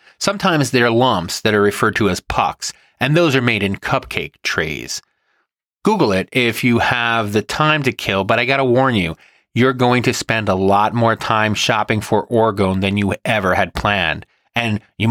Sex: male